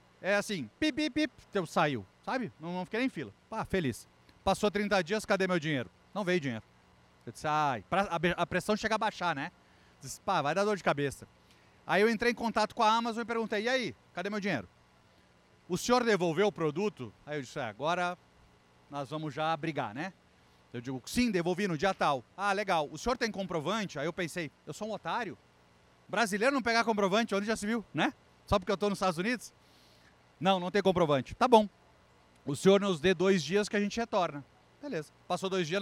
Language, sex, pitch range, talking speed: Portuguese, male, 140-210 Hz, 215 wpm